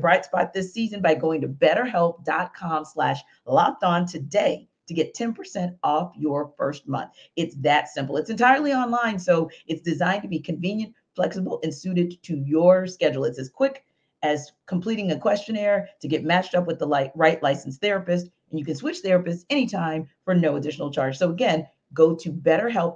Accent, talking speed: American, 180 wpm